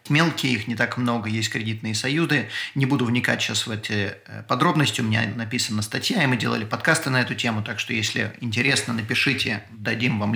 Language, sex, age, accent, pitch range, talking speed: Russian, male, 30-49, native, 115-135 Hz, 190 wpm